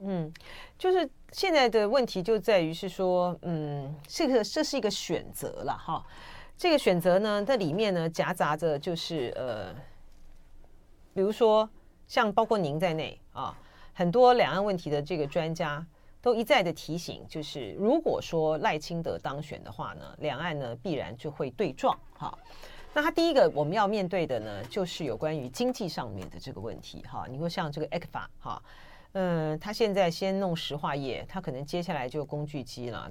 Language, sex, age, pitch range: Chinese, female, 40-59, 165-250 Hz